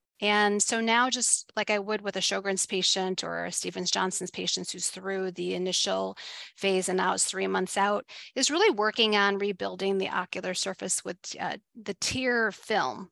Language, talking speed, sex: English, 180 wpm, female